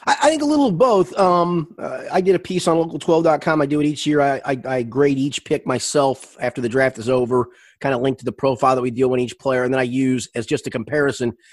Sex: male